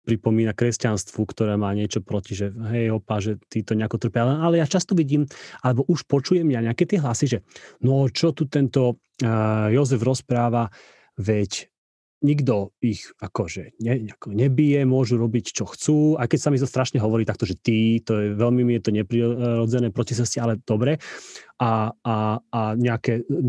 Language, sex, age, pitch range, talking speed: Slovak, male, 30-49, 110-135 Hz, 175 wpm